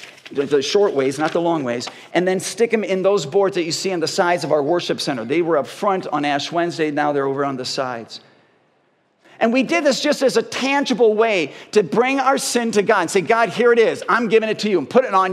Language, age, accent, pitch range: English, 50-69, American, 150-205 Hz